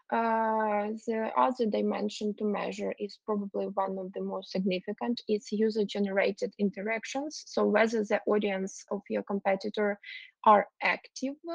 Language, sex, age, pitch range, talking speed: English, female, 20-39, 205-255 Hz, 130 wpm